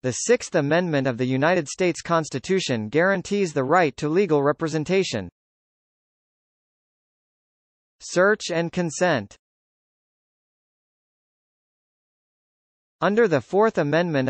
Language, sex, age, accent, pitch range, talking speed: English, male, 40-59, American, 140-190 Hz, 90 wpm